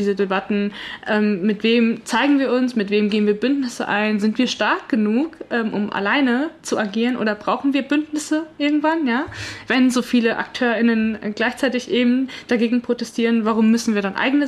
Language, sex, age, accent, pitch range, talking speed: German, female, 20-39, German, 210-245 Hz, 175 wpm